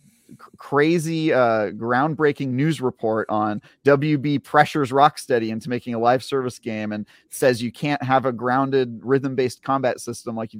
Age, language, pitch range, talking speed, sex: 30-49, English, 120-145 Hz, 160 wpm, male